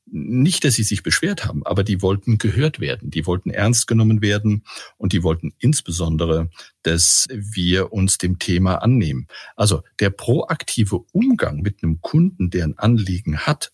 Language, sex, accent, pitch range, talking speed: German, male, German, 90-110 Hz, 160 wpm